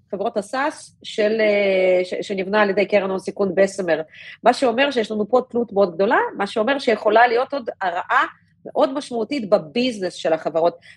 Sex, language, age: female, Hebrew, 40-59